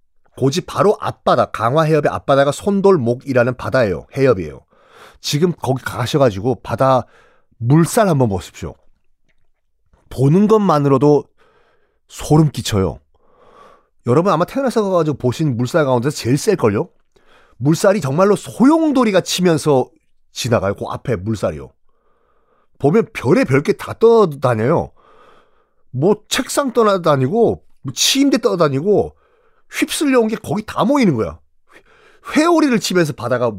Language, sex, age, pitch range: Korean, male, 40-59, 120-195 Hz